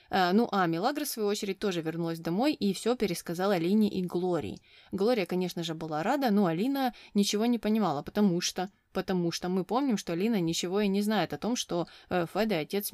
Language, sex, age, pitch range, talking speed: Russian, female, 20-39, 170-215 Hz, 205 wpm